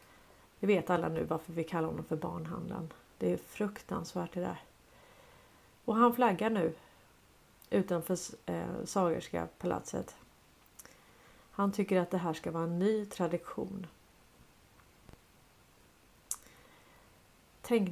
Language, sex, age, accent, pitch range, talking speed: Swedish, female, 40-59, native, 165-190 Hz, 110 wpm